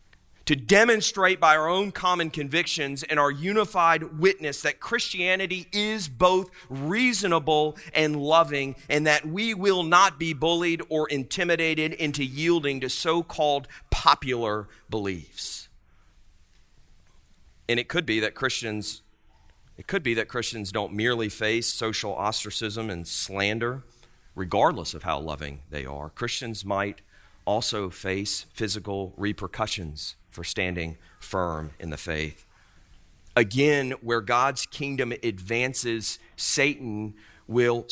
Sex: male